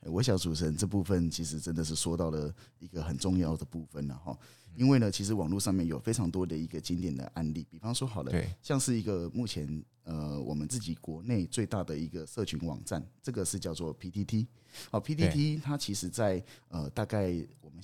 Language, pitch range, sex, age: Chinese, 80-110 Hz, male, 20-39